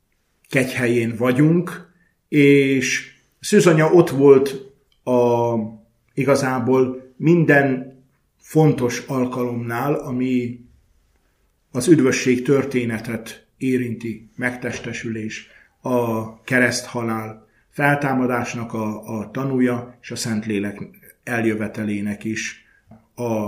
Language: Hungarian